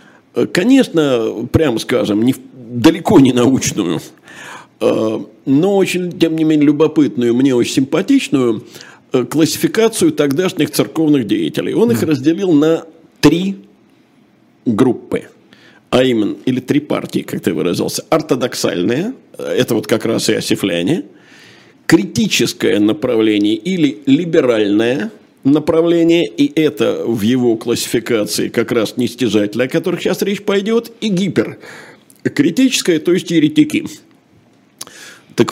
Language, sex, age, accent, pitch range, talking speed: Russian, male, 50-69, native, 135-215 Hz, 110 wpm